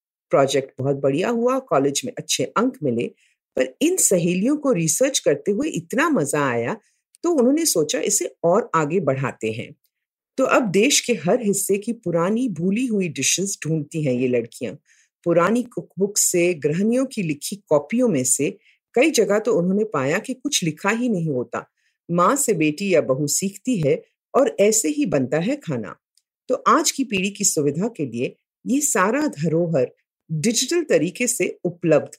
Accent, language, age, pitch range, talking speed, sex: native, Hindi, 50-69, 160-265 Hz, 115 wpm, female